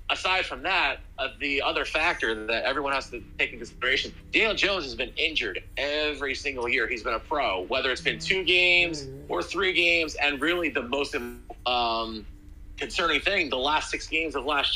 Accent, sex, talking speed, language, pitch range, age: American, male, 190 wpm, English, 120-165 Hz, 30-49